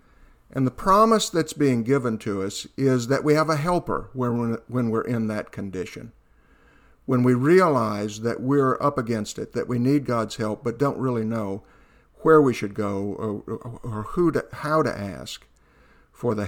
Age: 50-69